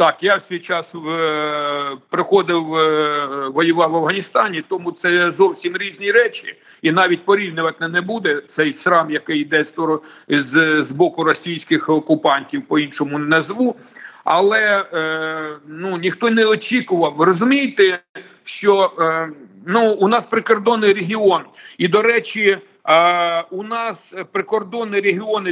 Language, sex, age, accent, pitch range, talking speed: Ukrainian, male, 50-69, native, 170-220 Hz, 130 wpm